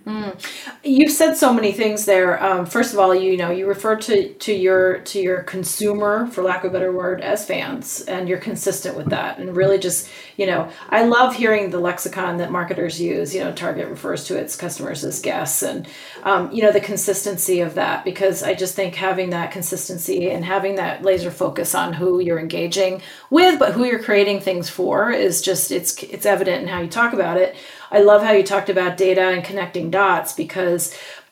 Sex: female